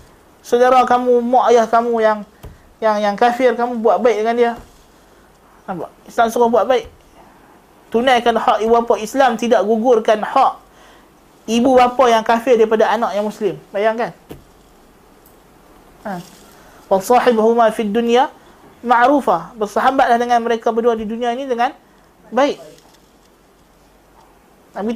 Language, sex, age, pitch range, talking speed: Malay, male, 20-39, 200-245 Hz, 125 wpm